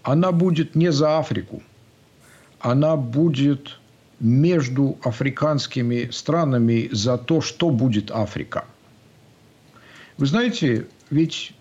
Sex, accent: male, native